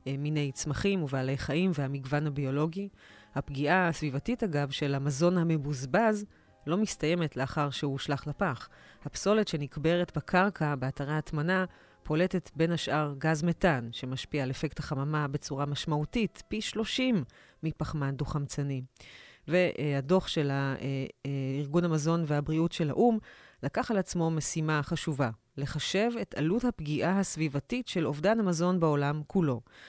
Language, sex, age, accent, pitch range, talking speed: Hebrew, female, 30-49, native, 145-185 Hz, 120 wpm